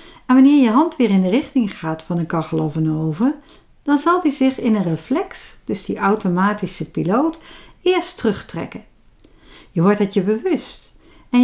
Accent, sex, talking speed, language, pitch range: Dutch, female, 180 wpm, Dutch, 185-250 Hz